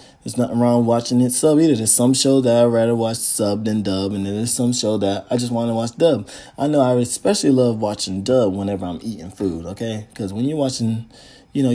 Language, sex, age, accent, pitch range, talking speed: English, male, 20-39, American, 110-135 Hz, 240 wpm